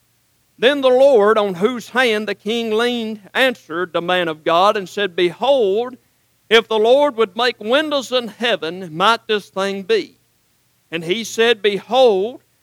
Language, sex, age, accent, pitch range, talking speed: English, male, 50-69, American, 200-250 Hz, 155 wpm